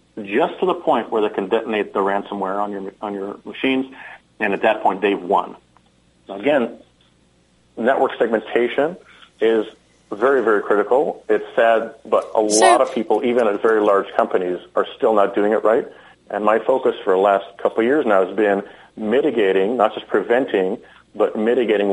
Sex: male